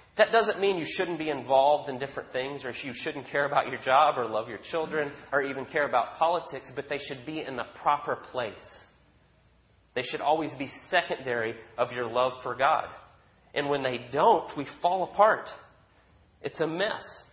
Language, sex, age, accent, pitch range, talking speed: English, male, 30-49, American, 135-175 Hz, 185 wpm